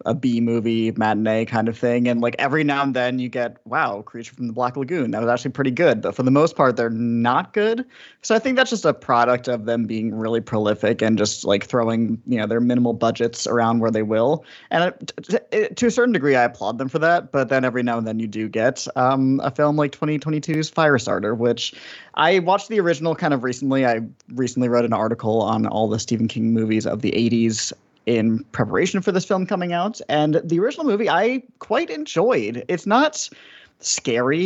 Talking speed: 215 wpm